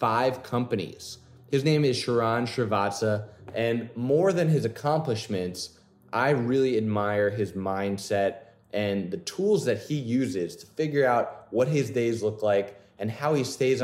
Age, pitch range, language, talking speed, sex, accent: 20-39, 105-130 Hz, English, 150 wpm, male, American